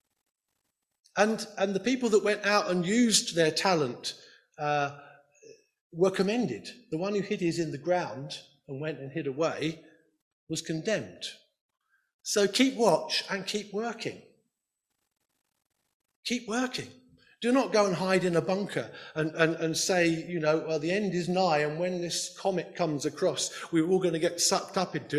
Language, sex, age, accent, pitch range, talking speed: English, male, 50-69, British, 145-205 Hz, 165 wpm